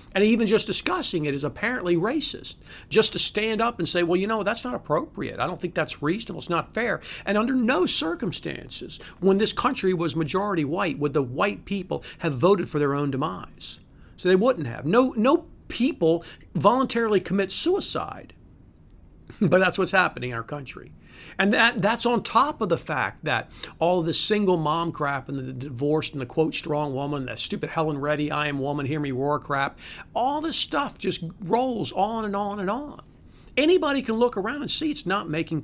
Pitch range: 150-225 Hz